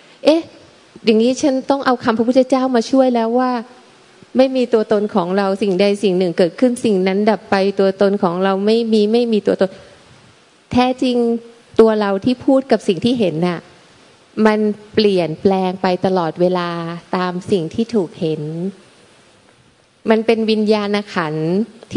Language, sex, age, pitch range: Thai, female, 20-39, 185-235 Hz